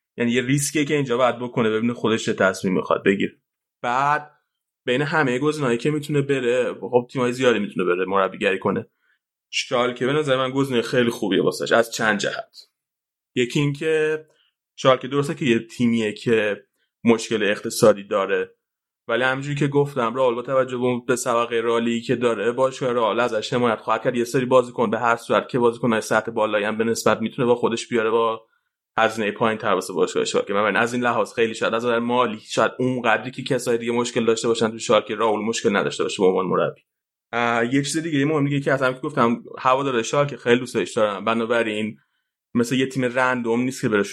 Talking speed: 190 wpm